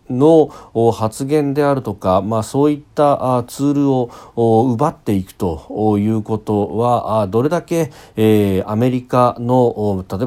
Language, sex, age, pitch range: Japanese, male, 40-59, 95-130 Hz